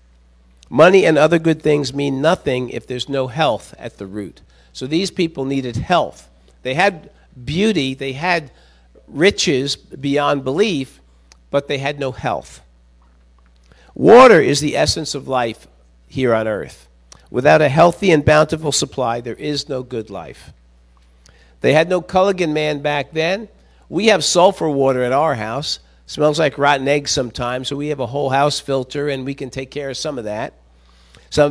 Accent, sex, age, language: American, male, 50-69, English